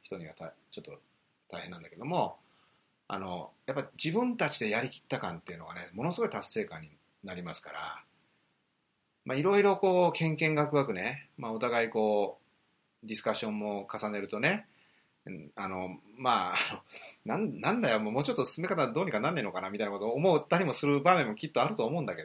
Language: Japanese